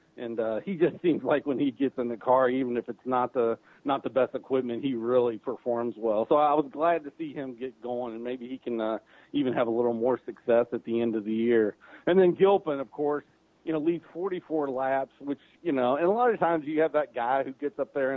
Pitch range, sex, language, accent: 125-150 Hz, male, English, American